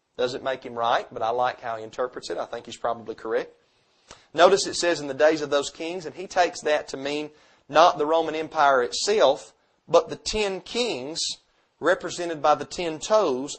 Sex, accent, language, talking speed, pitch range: male, American, English, 200 wpm, 145-215 Hz